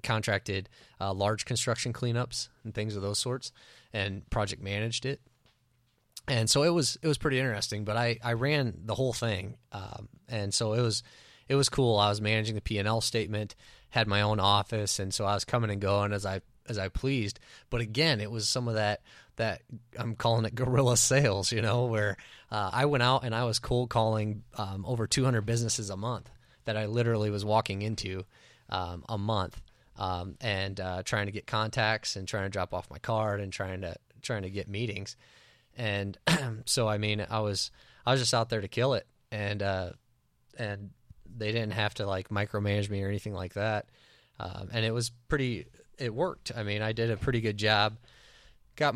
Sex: male